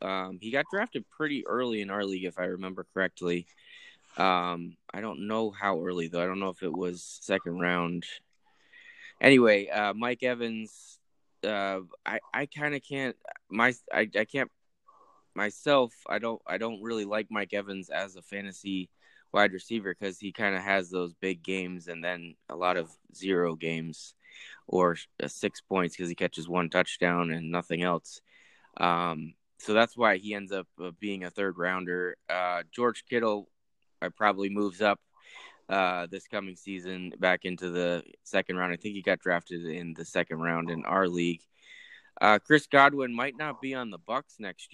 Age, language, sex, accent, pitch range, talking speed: 20-39, English, male, American, 90-105 Hz, 175 wpm